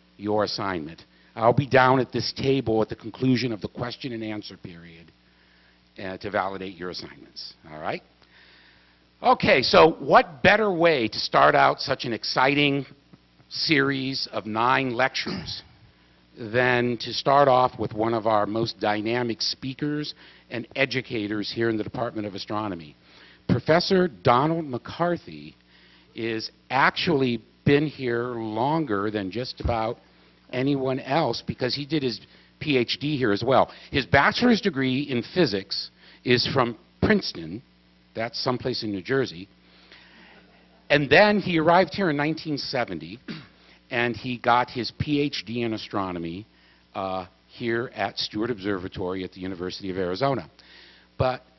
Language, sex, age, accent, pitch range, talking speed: English, male, 50-69, American, 95-135 Hz, 135 wpm